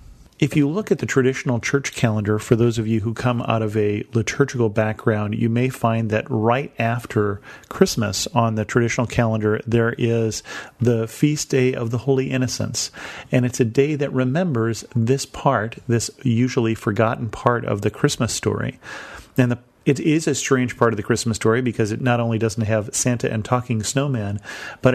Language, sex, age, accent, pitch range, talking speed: English, male, 40-59, American, 110-130 Hz, 185 wpm